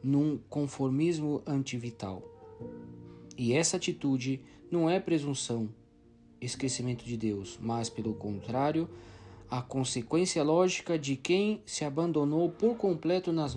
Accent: Brazilian